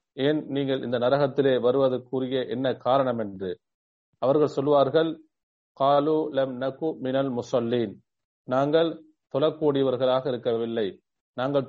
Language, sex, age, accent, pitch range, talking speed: English, male, 40-59, Indian, 130-155 Hz, 125 wpm